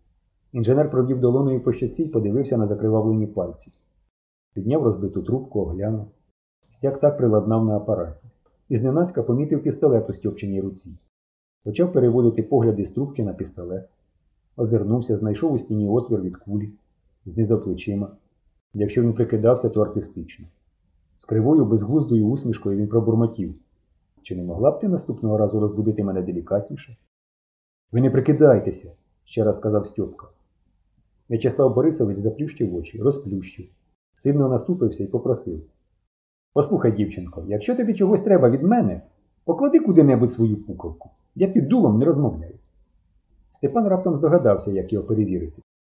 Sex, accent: male, native